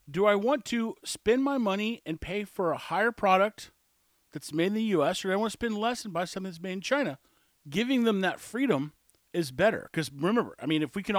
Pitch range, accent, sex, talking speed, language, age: 175-240 Hz, American, male, 240 wpm, English, 40-59